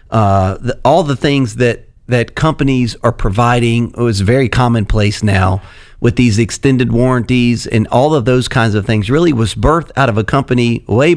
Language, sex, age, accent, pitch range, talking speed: English, male, 40-59, American, 115-135 Hz, 175 wpm